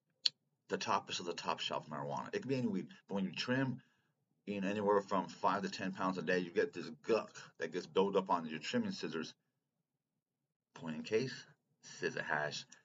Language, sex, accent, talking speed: English, male, American, 210 wpm